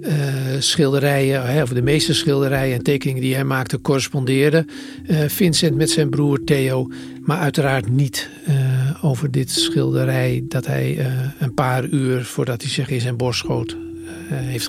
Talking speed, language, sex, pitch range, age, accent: 160 wpm, Dutch, male, 125-155 Hz, 50-69, Dutch